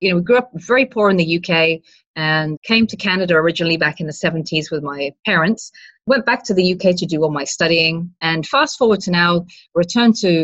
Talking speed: 225 wpm